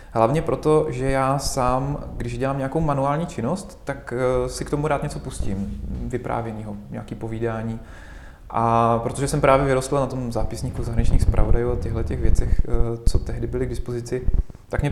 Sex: male